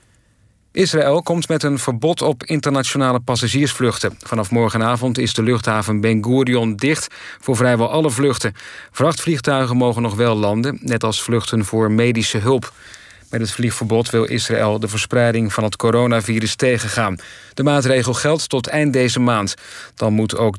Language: Dutch